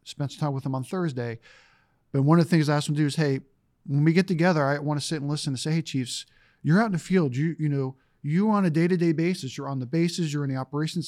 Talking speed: 305 wpm